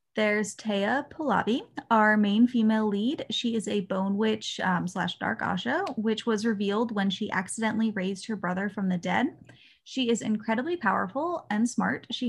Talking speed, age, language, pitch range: 170 wpm, 20-39, English, 200-240 Hz